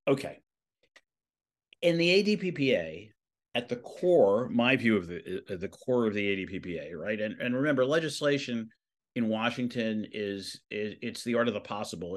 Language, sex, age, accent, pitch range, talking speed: English, male, 50-69, American, 95-125 Hz, 160 wpm